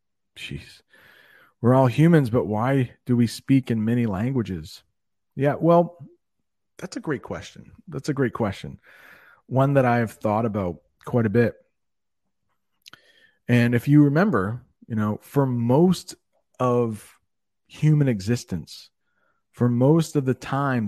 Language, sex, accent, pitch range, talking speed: English, male, American, 105-135 Hz, 135 wpm